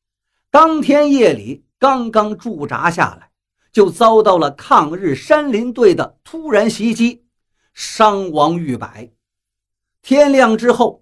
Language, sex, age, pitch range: Chinese, male, 50-69, 150-250 Hz